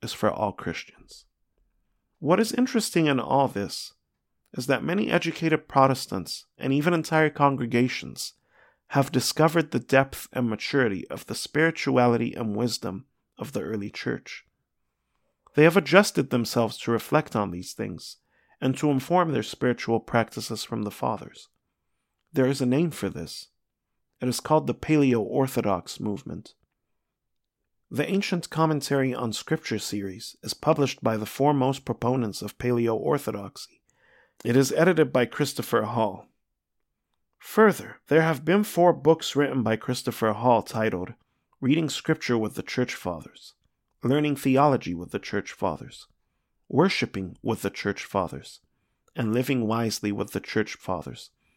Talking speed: 135 wpm